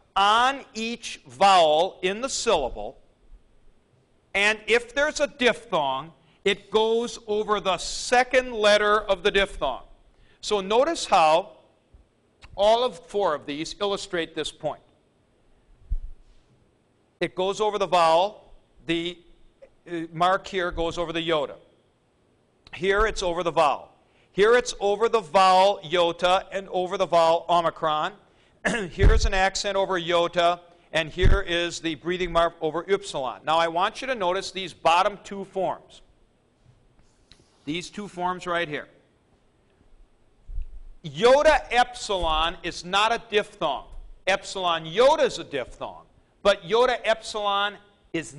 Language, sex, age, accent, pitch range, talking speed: English, male, 50-69, American, 170-210 Hz, 125 wpm